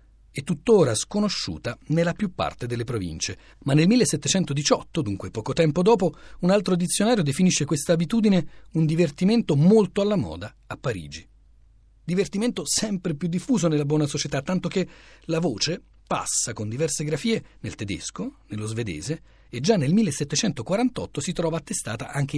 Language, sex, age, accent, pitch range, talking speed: Italian, male, 40-59, native, 120-180 Hz, 145 wpm